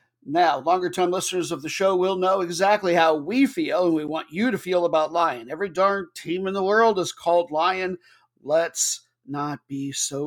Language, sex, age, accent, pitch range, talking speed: English, male, 50-69, American, 160-205 Hz, 195 wpm